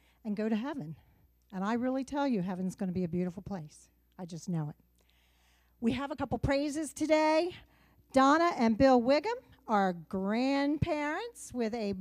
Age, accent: 50-69, American